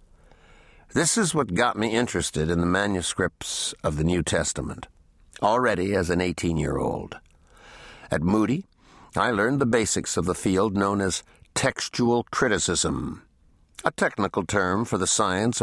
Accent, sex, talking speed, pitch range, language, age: American, male, 140 wpm, 85-110 Hz, English, 60-79